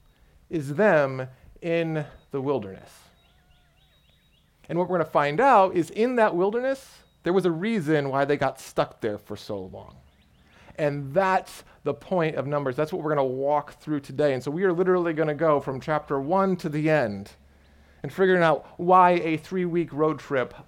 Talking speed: 185 wpm